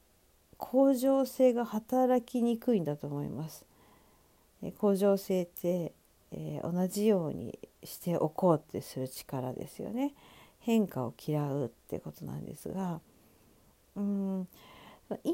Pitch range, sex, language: 180-260 Hz, female, Japanese